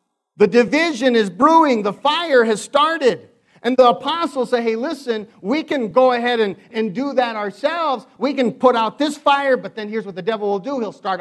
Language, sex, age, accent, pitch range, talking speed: English, male, 50-69, American, 225-285 Hz, 210 wpm